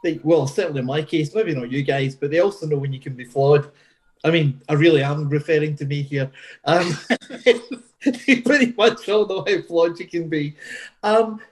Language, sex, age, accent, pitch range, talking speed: English, male, 30-49, British, 145-220 Hz, 205 wpm